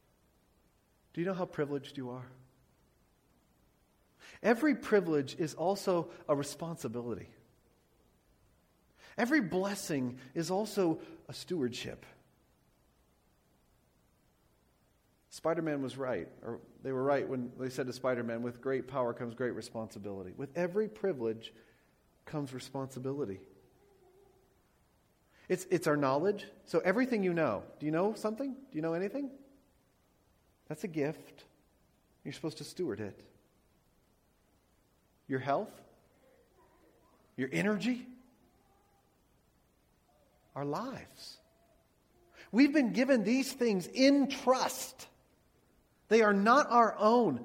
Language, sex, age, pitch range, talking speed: English, male, 40-59, 130-225 Hz, 105 wpm